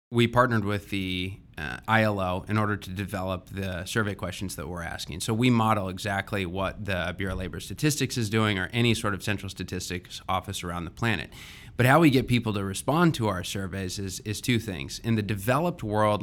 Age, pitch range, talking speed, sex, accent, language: 20-39, 95-110 Hz, 205 wpm, male, American, English